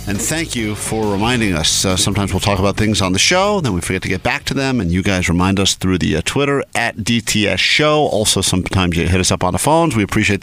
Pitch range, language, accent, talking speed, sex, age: 95-120 Hz, English, American, 265 wpm, male, 50-69